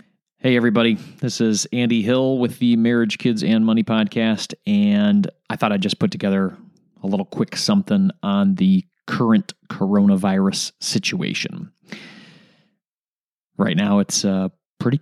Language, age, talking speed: English, 30-49, 135 wpm